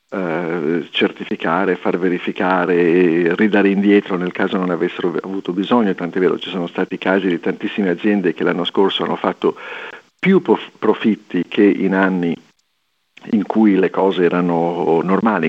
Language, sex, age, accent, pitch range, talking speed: Italian, male, 50-69, native, 90-105 Hz, 140 wpm